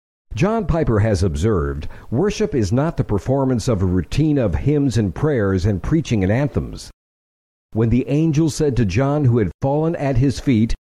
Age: 60-79